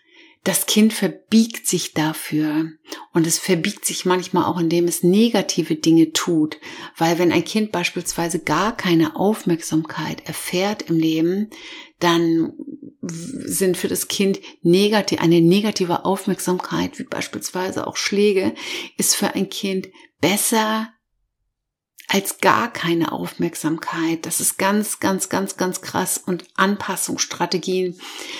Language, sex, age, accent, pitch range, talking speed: German, female, 50-69, German, 170-215 Hz, 120 wpm